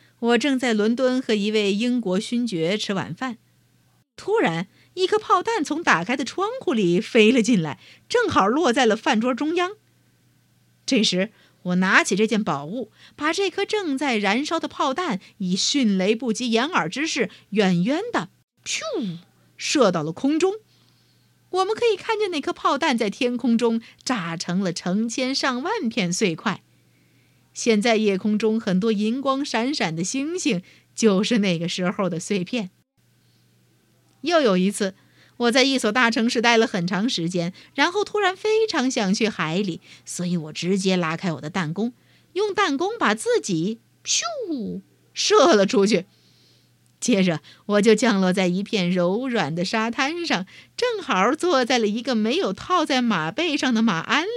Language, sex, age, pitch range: Chinese, female, 50-69, 190-280 Hz